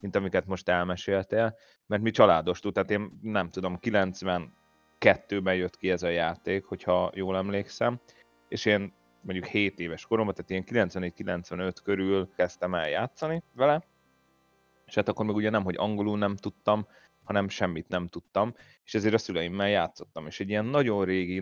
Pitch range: 90-105 Hz